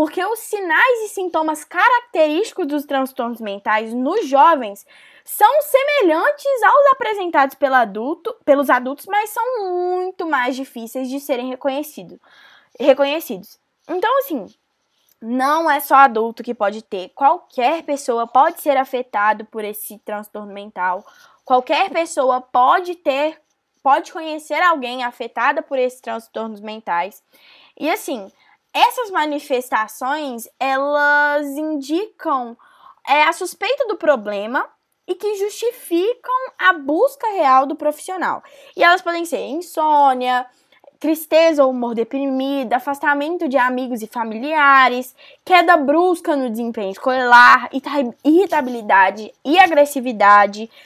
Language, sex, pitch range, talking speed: Portuguese, female, 250-335 Hz, 110 wpm